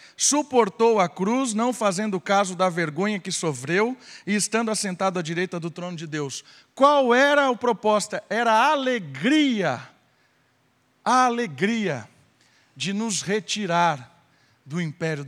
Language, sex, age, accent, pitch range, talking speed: Portuguese, male, 50-69, Brazilian, 140-180 Hz, 130 wpm